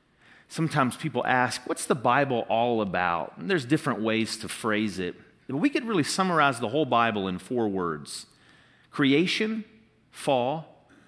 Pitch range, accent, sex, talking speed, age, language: 135-195 Hz, American, male, 140 wpm, 40-59, English